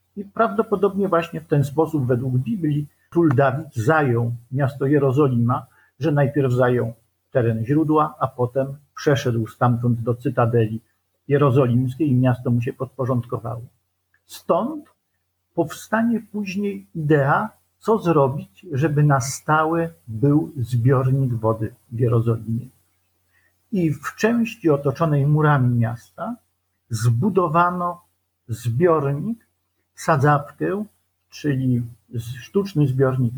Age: 50-69